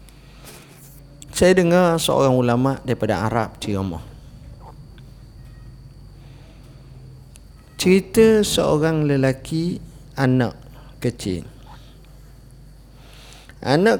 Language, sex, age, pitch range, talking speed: Malay, male, 50-69, 105-165 Hz, 60 wpm